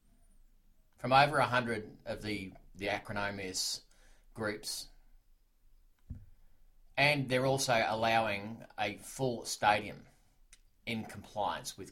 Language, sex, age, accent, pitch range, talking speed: English, male, 30-49, Australian, 95-125 Hz, 95 wpm